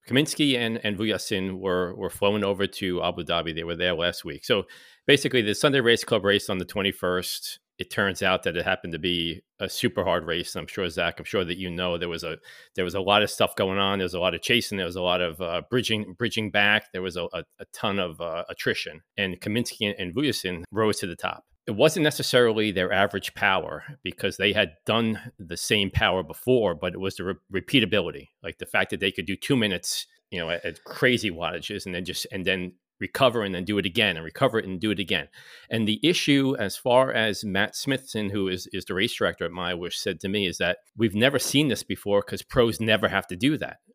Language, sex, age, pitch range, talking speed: English, male, 40-59, 90-115 Hz, 240 wpm